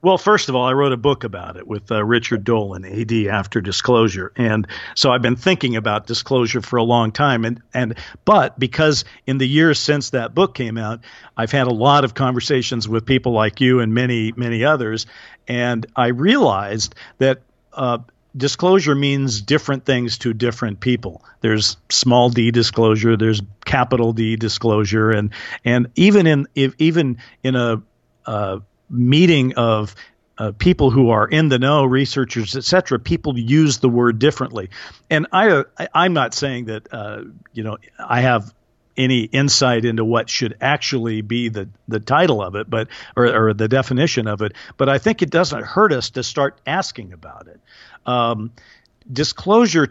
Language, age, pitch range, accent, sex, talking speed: English, 50-69, 115-135 Hz, American, male, 175 wpm